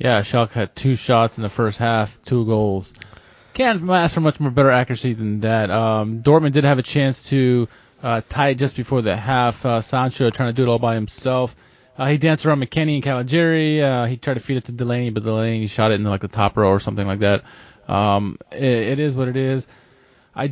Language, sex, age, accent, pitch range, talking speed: English, male, 20-39, American, 120-145 Hz, 230 wpm